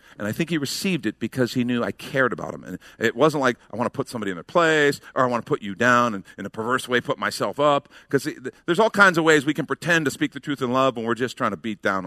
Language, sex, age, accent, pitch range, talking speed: English, male, 50-69, American, 100-145 Hz, 310 wpm